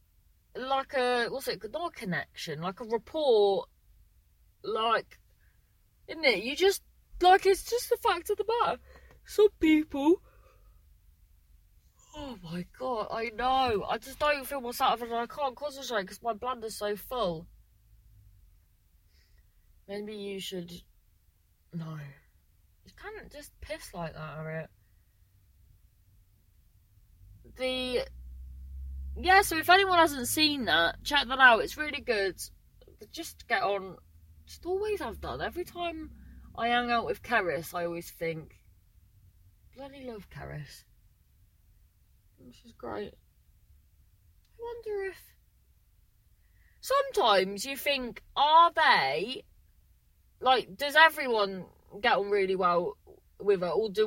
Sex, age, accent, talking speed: female, 30-49, British, 125 wpm